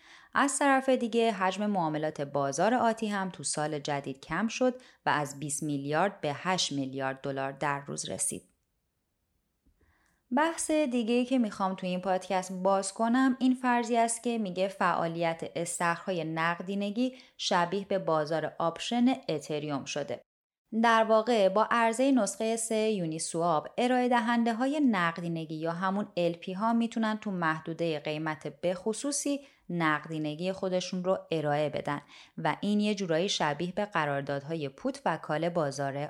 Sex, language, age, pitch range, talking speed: female, Persian, 20-39, 160-230 Hz, 140 wpm